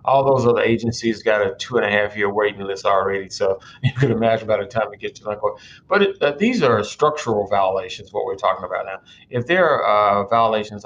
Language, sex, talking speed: English, male, 240 wpm